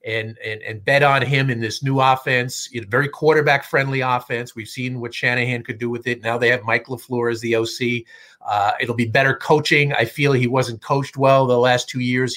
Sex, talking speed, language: male, 220 wpm, English